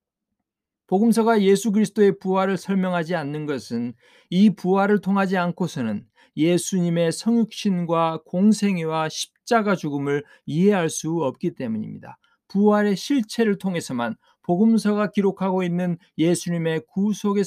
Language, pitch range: Korean, 165-210 Hz